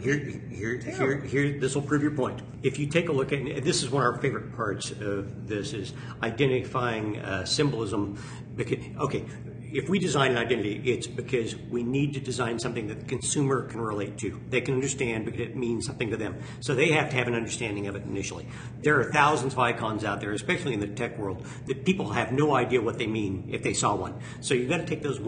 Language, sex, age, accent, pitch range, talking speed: English, male, 50-69, American, 110-135 Hz, 235 wpm